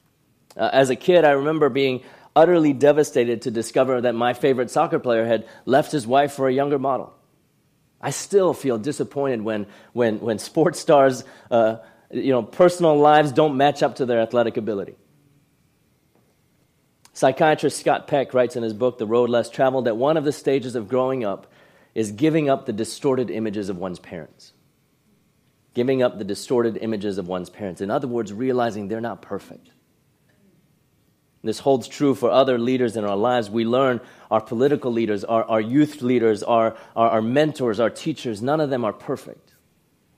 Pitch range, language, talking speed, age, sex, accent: 115-145 Hz, English, 175 wpm, 30-49, male, American